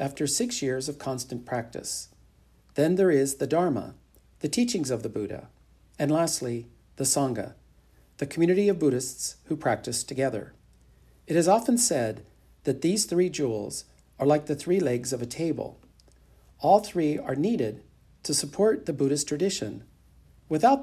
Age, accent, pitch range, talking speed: 50-69, American, 125-165 Hz, 155 wpm